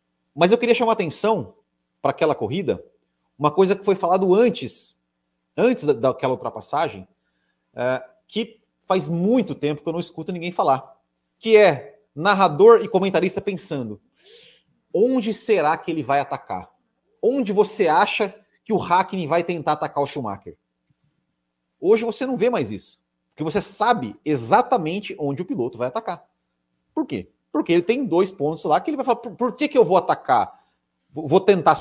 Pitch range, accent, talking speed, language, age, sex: 130-215 Hz, Brazilian, 165 wpm, Portuguese, 30-49, male